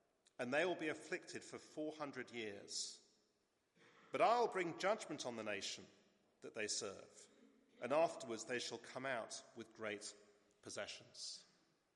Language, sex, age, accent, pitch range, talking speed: English, male, 40-59, British, 125-165 Hz, 135 wpm